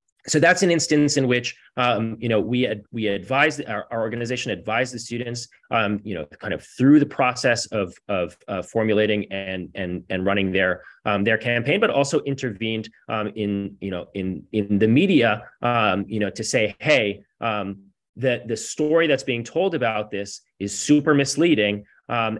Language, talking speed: English, 185 wpm